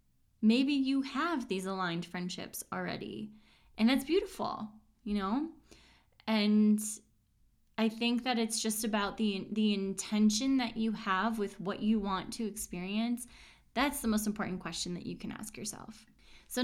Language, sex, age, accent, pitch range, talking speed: English, female, 10-29, American, 190-230 Hz, 150 wpm